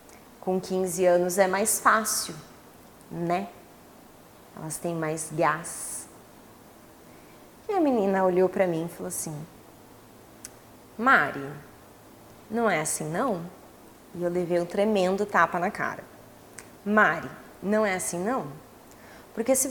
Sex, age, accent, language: female, 20-39, Brazilian, Portuguese